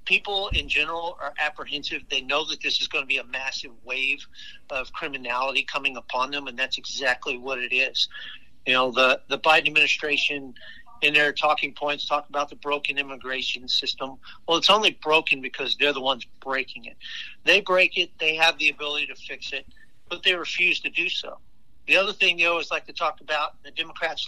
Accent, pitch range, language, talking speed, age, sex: American, 130-150 Hz, English, 200 wpm, 50-69, male